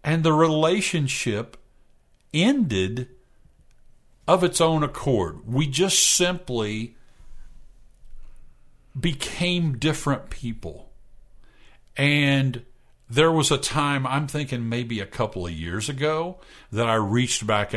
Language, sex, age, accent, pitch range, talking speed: English, male, 50-69, American, 115-155 Hz, 105 wpm